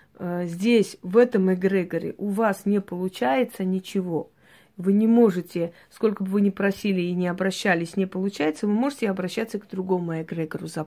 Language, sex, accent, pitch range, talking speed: Russian, female, native, 185-215 Hz, 160 wpm